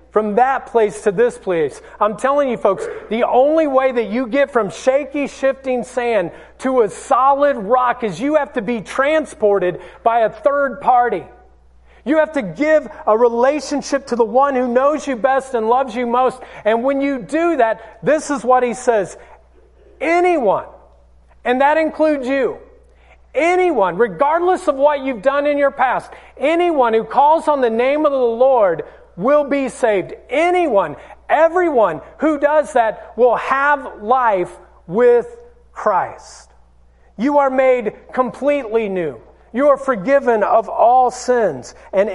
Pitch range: 215-285 Hz